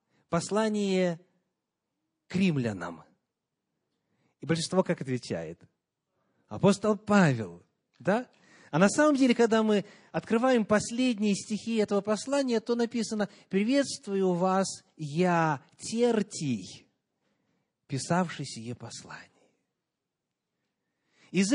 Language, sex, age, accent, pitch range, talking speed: Russian, male, 30-49, native, 160-220 Hz, 85 wpm